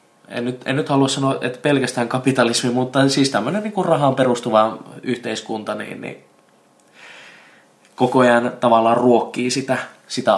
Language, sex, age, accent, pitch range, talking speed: Finnish, male, 20-39, native, 110-135 Hz, 140 wpm